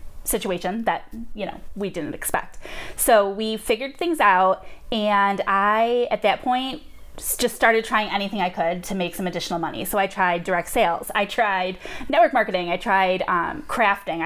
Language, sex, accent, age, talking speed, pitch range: English, female, American, 20-39, 175 wpm, 180-230 Hz